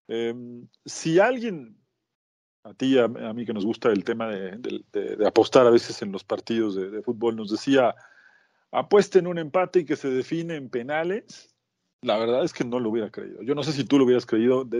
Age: 40-59